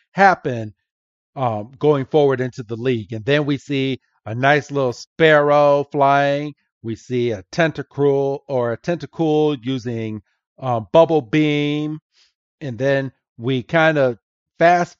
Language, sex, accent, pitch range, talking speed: English, male, American, 120-155 Hz, 130 wpm